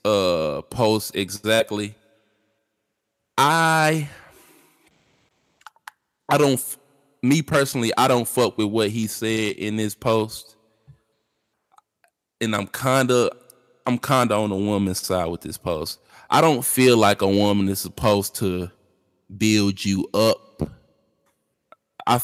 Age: 20-39